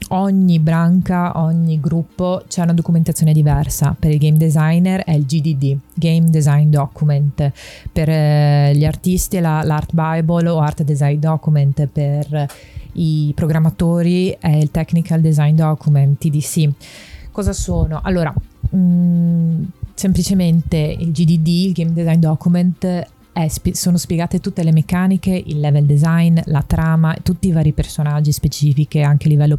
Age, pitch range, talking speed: 30-49, 145-170 Hz, 140 wpm